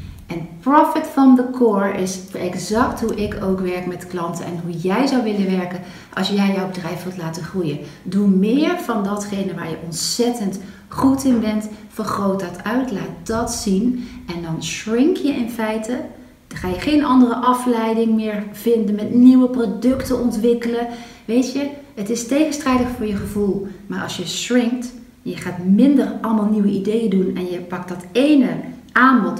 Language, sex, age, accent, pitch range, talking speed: Dutch, female, 40-59, Dutch, 180-245 Hz, 175 wpm